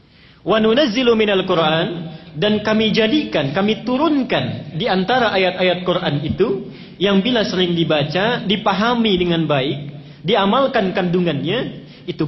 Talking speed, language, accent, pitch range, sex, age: 110 wpm, Indonesian, native, 150-205 Hz, male, 40-59